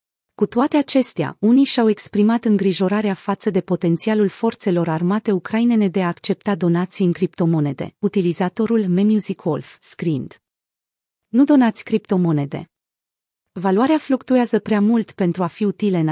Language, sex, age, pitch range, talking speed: Romanian, female, 30-49, 175-220 Hz, 125 wpm